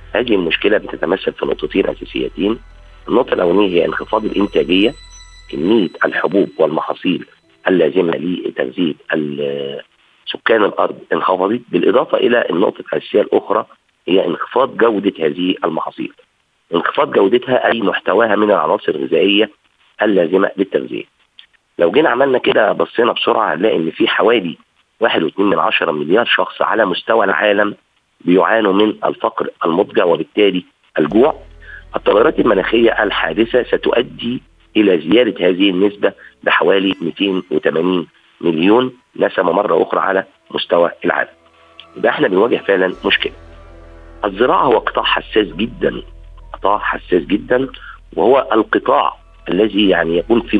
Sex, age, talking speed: male, 50-69, 115 wpm